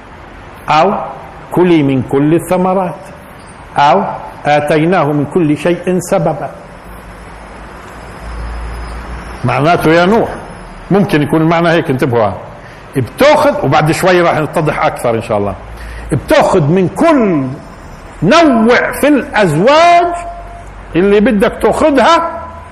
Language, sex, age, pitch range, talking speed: Arabic, male, 50-69, 140-225 Hz, 100 wpm